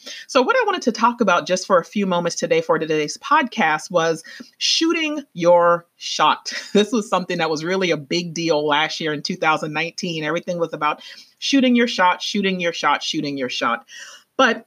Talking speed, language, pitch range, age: 190 wpm, English, 175-245 Hz, 30-49